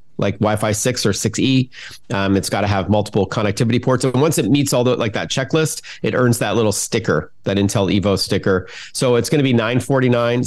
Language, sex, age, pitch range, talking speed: English, male, 40-59, 105-130 Hz, 230 wpm